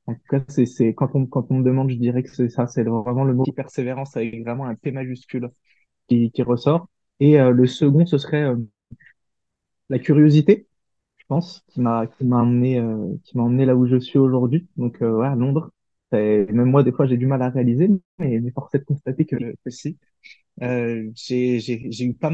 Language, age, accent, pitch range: French, 20-39, French, 120-140 Hz